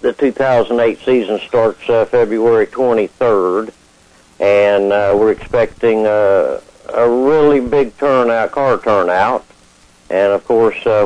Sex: male